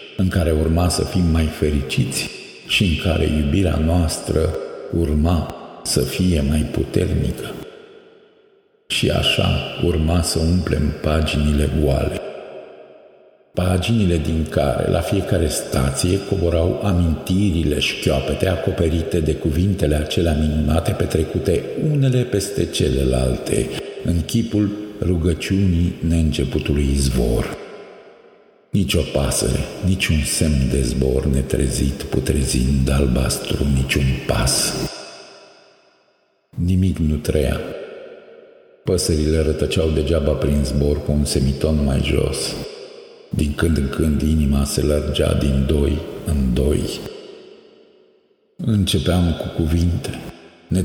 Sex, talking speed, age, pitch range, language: male, 105 wpm, 50-69, 75-95 Hz, Romanian